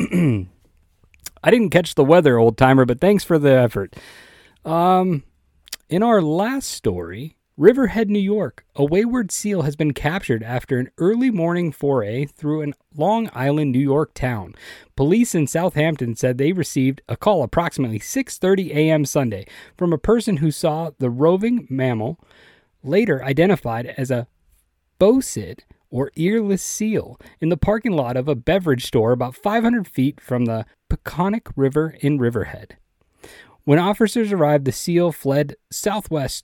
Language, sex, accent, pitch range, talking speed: English, male, American, 130-185 Hz, 150 wpm